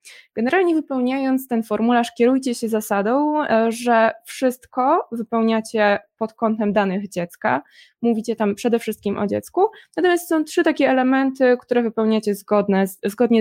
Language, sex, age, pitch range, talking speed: Polish, female, 20-39, 200-245 Hz, 130 wpm